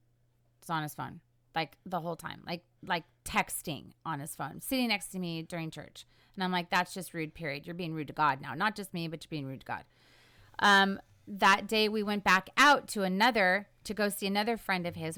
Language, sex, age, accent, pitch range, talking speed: English, female, 30-49, American, 145-195 Hz, 225 wpm